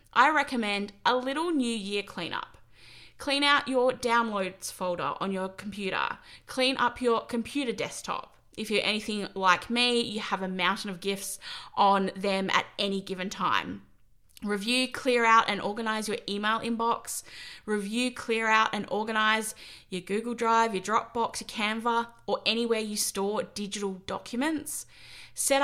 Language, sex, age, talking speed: English, female, 20-39, 150 wpm